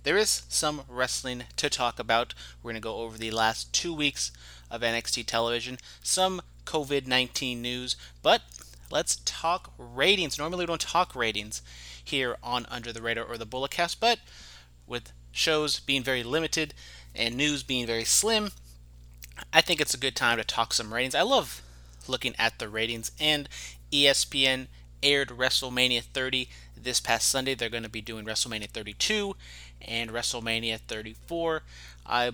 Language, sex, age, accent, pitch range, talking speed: English, male, 30-49, American, 105-145 Hz, 160 wpm